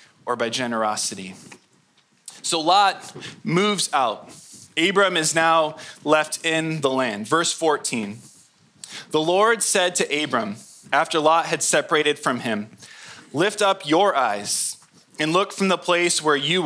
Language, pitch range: English, 140-180 Hz